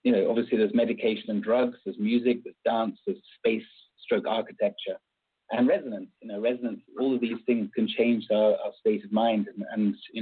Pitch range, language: 105-140 Hz, English